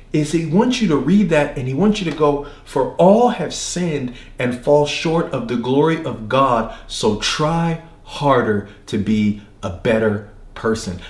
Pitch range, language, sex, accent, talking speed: 100-145 Hz, English, male, American, 180 wpm